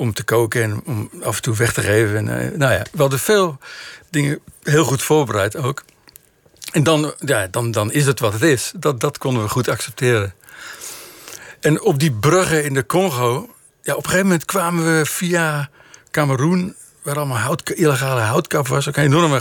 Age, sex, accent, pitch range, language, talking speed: 60-79, male, Dutch, 125-165 Hz, Dutch, 185 wpm